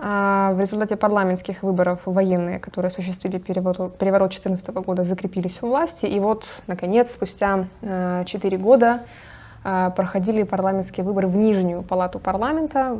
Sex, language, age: female, Russian, 20-39